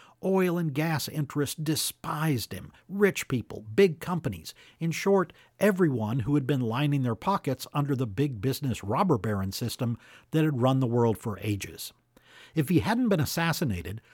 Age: 50-69